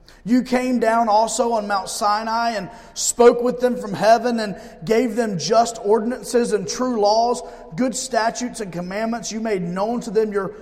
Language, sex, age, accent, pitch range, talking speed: English, male, 30-49, American, 190-235 Hz, 175 wpm